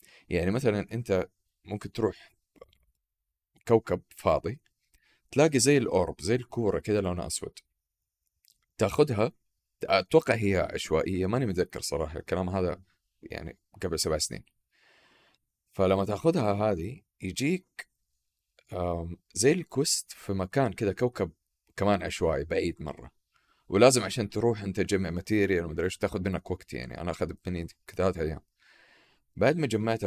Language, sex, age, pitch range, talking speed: Arabic, male, 30-49, 85-110 Hz, 125 wpm